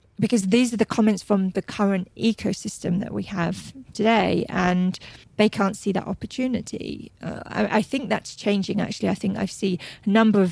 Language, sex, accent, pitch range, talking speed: English, female, British, 185-220 Hz, 190 wpm